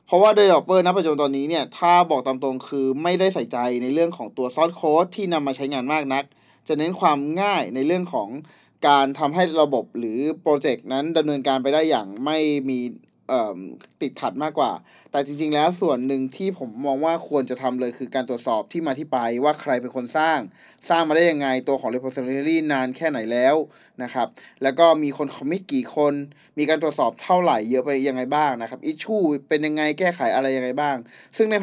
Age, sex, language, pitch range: 20-39, male, Thai, 135-170 Hz